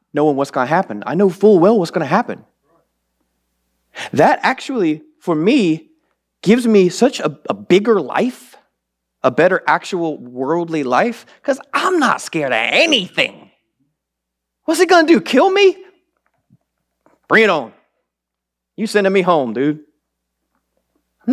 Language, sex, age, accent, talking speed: English, male, 30-49, American, 135 wpm